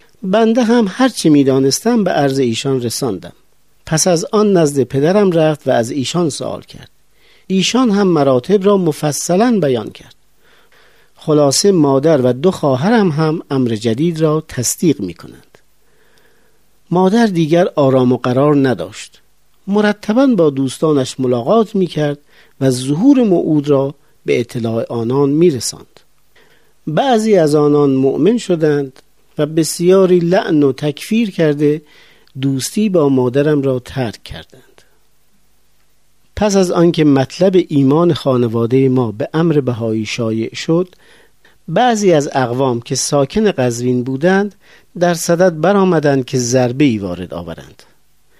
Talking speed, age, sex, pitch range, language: 125 wpm, 50-69, male, 130-185 Hz, Persian